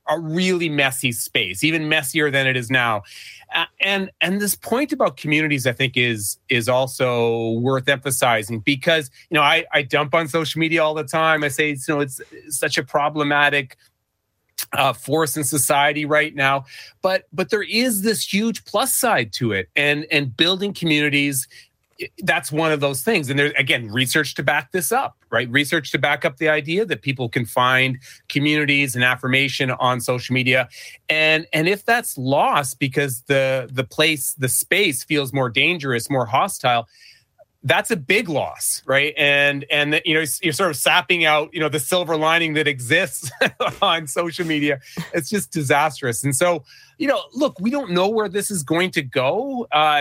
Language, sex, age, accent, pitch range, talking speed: English, male, 30-49, American, 130-160 Hz, 180 wpm